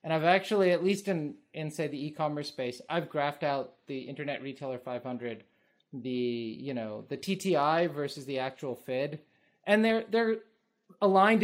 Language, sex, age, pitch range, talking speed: English, male, 20-39, 125-175 Hz, 165 wpm